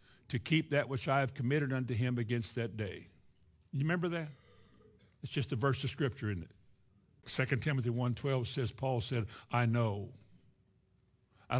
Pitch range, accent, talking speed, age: 105-135 Hz, American, 165 wpm, 60-79